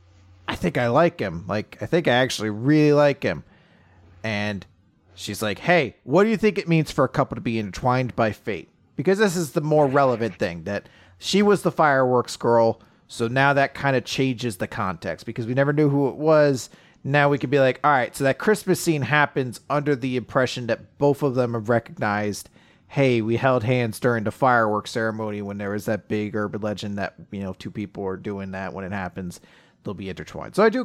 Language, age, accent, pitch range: English, 30-49, American, 110-155 Hz